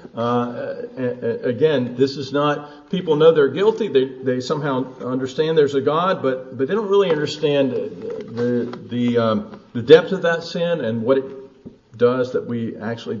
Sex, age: male, 50-69